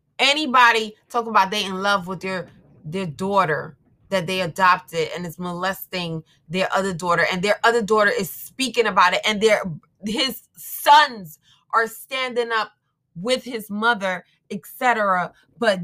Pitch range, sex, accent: 160-210 Hz, female, American